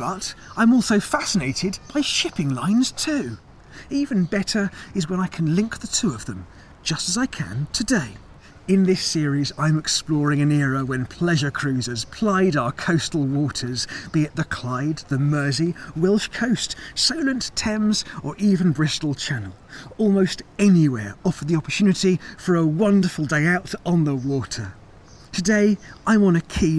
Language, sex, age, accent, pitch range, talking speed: English, male, 30-49, British, 140-200 Hz, 155 wpm